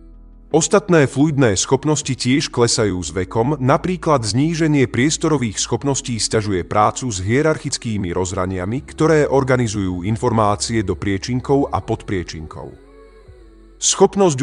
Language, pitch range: Slovak, 105-145 Hz